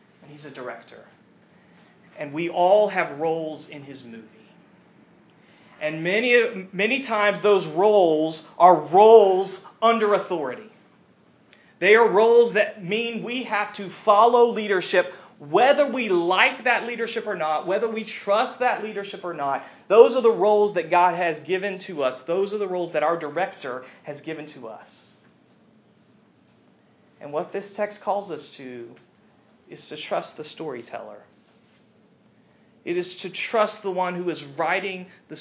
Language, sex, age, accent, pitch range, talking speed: English, male, 40-59, American, 155-210 Hz, 150 wpm